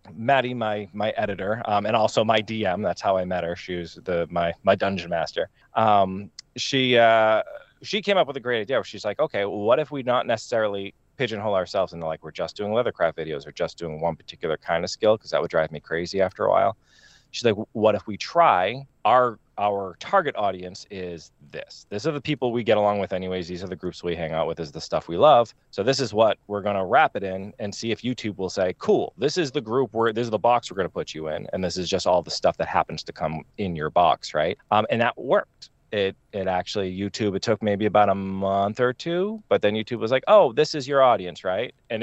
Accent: American